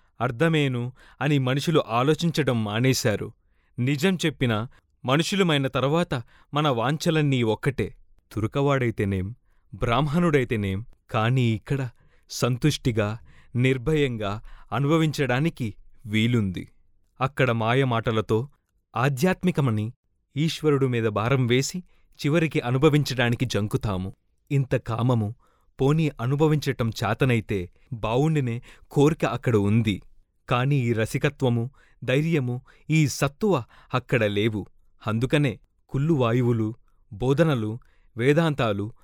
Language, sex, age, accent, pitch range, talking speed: Telugu, male, 30-49, native, 110-145 Hz, 80 wpm